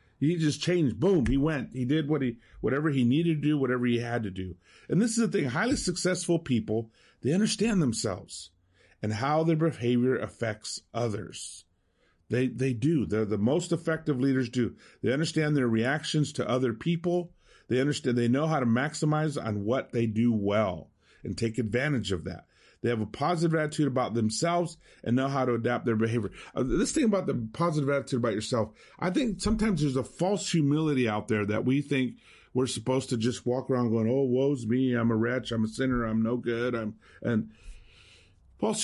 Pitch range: 110-155 Hz